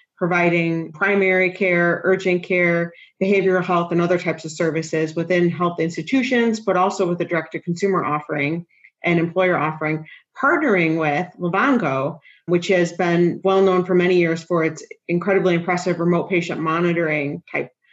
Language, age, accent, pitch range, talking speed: English, 30-49, American, 165-185 Hz, 135 wpm